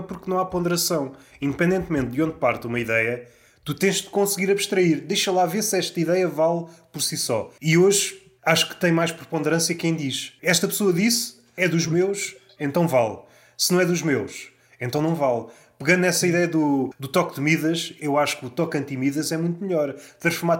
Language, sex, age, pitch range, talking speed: Portuguese, male, 20-39, 145-185 Hz, 200 wpm